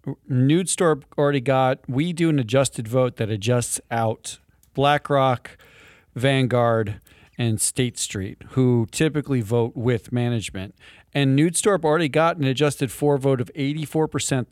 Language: English